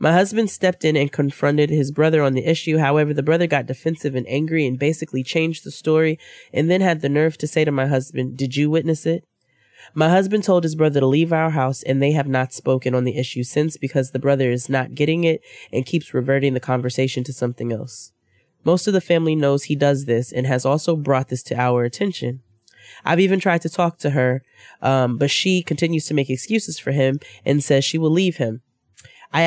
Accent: American